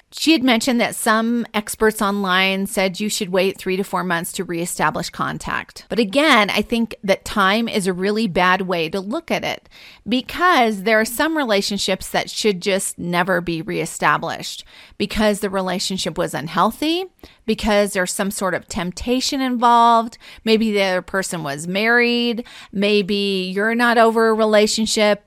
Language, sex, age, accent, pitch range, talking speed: English, female, 30-49, American, 190-230 Hz, 160 wpm